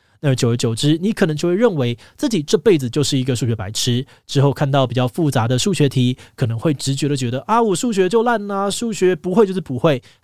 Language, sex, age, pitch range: Chinese, male, 20-39, 120-160 Hz